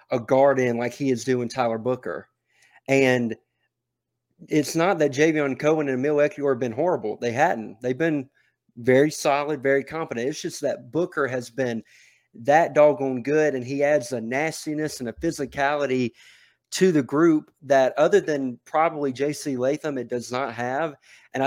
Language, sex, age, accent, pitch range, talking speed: English, male, 30-49, American, 125-155 Hz, 170 wpm